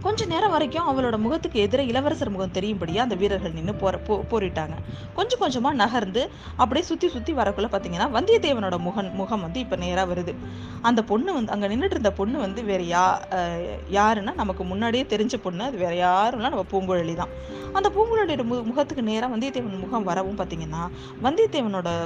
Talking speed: 150 wpm